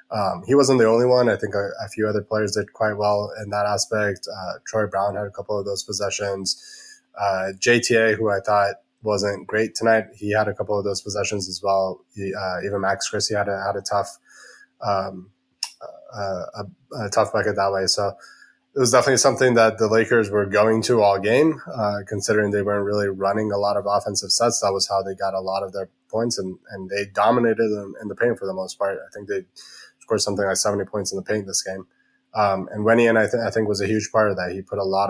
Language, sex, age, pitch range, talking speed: English, male, 20-39, 95-110 Hz, 240 wpm